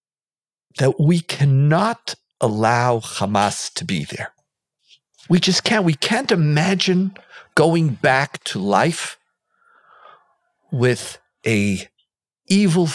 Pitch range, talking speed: 110-180 Hz, 95 wpm